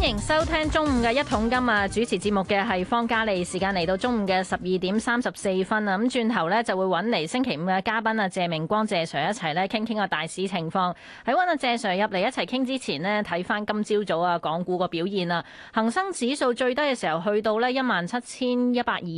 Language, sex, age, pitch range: Chinese, female, 20-39, 175-235 Hz